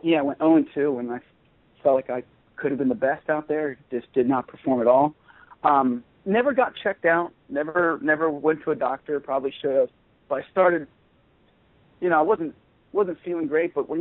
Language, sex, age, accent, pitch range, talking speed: English, male, 40-59, American, 130-205 Hz, 210 wpm